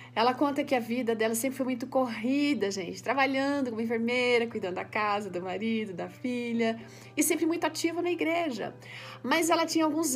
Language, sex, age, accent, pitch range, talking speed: Portuguese, female, 40-59, Brazilian, 215-270 Hz, 185 wpm